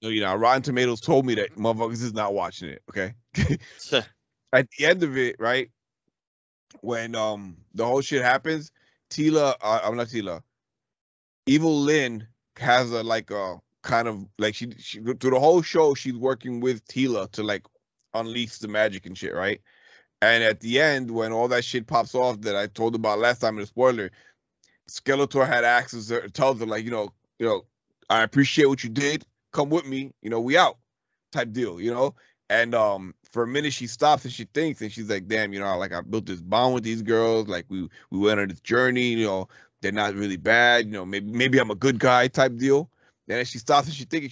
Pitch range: 105-130 Hz